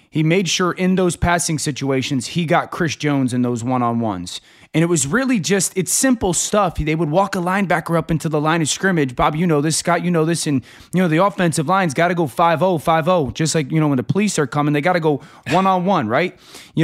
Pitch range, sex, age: 145-180 Hz, male, 20-39